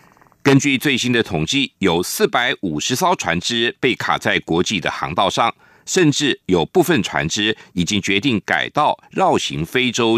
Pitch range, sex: 110-150 Hz, male